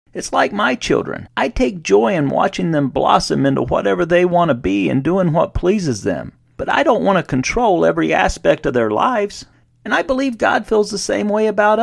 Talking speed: 215 wpm